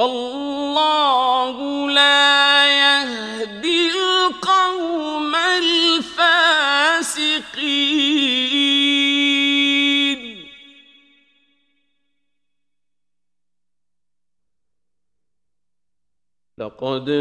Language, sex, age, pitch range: Arabic, male, 50-69, 150-215 Hz